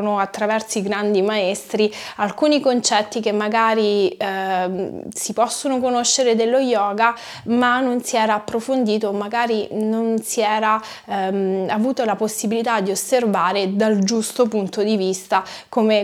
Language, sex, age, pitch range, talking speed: Italian, female, 20-39, 200-235 Hz, 130 wpm